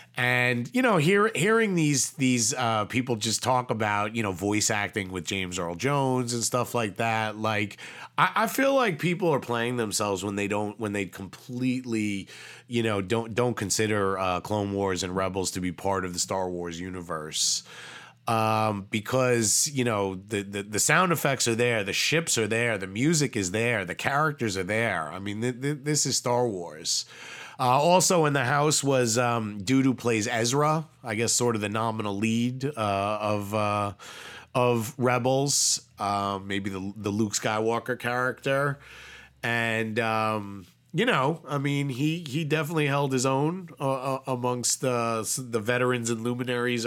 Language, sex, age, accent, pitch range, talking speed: English, male, 30-49, American, 100-130 Hz, 170 wpm